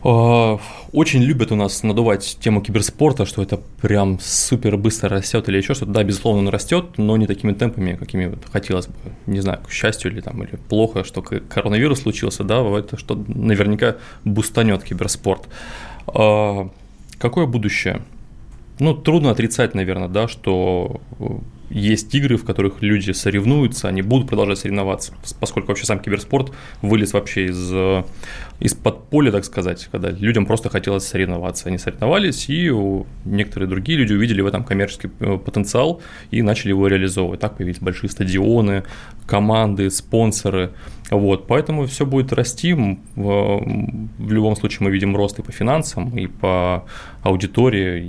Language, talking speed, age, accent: Russian, 145 wpm, 20-39, native